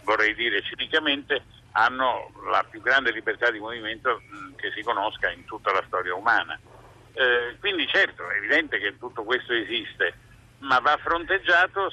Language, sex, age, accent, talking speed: Italian, male, 50-69, native, 150 wpm